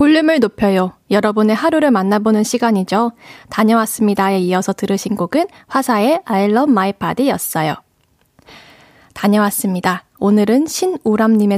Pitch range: 200-255 Hz